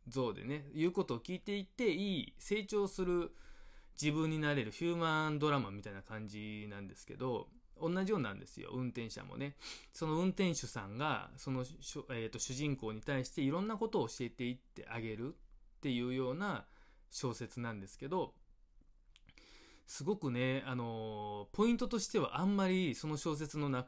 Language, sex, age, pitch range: Japanese, male, 20-39, 120-170 Hz